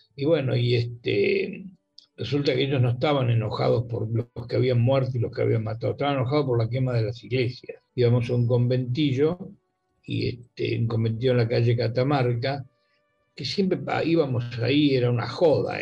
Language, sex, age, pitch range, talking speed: Spanish, male, 60-79, 120-150 Hz, 180 wpm